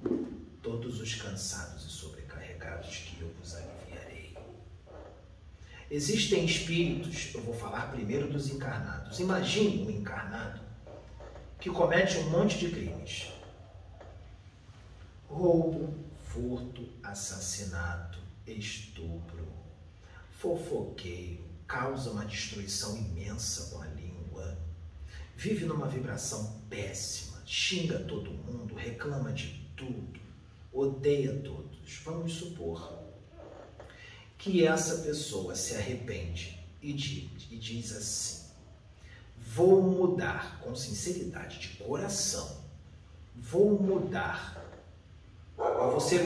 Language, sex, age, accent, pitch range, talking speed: Portuguese, male, 40-59, Brazilian, 90-145 Hz, 90 wpm